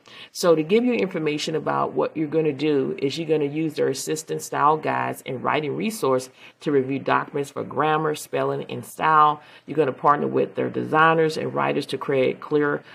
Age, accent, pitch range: 40-59, American, 135-160 Hz